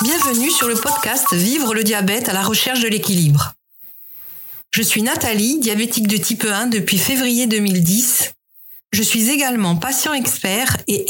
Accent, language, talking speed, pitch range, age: French, French, 160 wpm, 210-265 Hz, 50-69